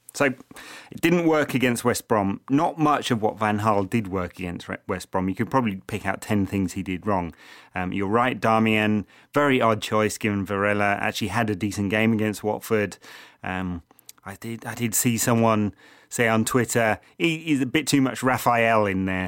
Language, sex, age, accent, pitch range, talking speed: English, male, 30-49, British, 100-125 Hz, 195 wpm